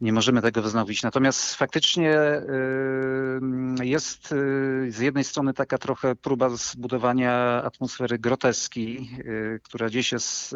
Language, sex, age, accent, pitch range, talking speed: Polish, male, 40-59, native, 120-145 Hz, 110 wpm